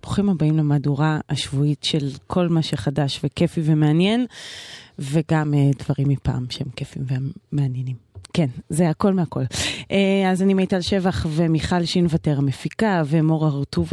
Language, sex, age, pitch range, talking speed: Hebrew, female, 20-39, 140-175 Hz, 125 wpm